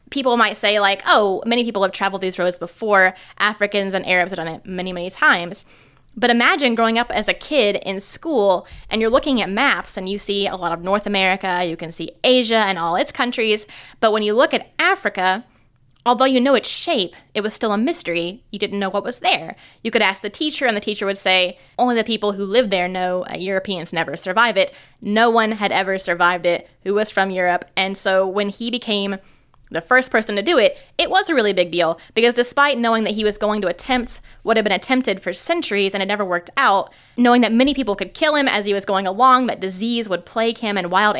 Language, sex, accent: English, female, American